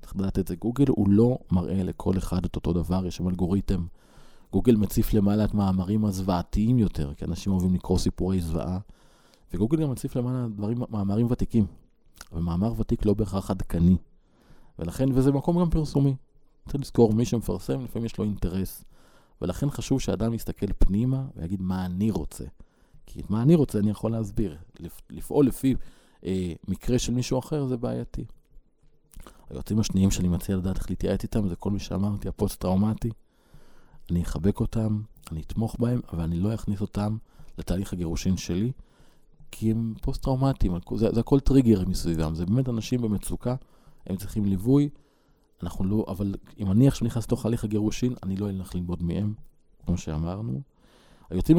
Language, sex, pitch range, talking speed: Hebrew, male, 90-120 Hz, 160 wpm